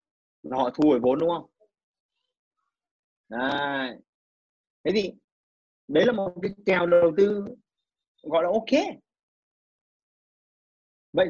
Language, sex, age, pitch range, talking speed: Vietnamese, male, 30-49, 145-190 Hz, 105 wpm